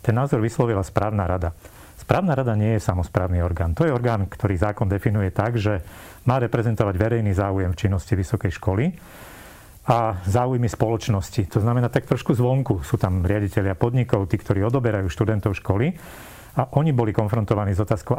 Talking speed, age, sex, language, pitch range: 165 wpm, 40-59, male, Slovak, 105-125 Hz